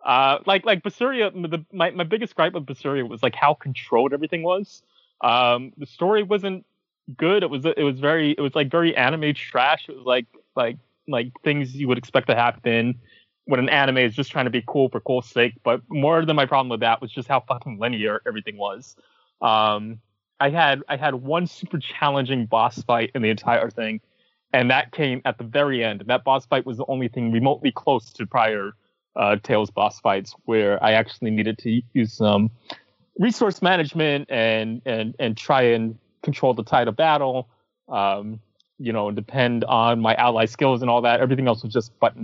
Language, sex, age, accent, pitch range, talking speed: English, male, 20-39, American, 115-150 Hz, 200 wpm